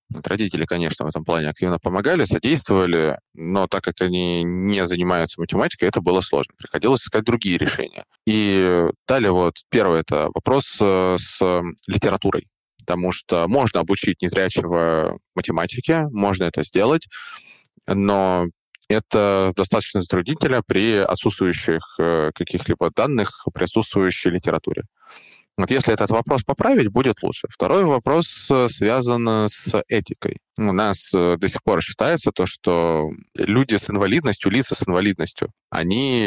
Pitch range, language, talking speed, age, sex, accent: 85-105 Hz, Russian, 125 wpm, 20-39, male, native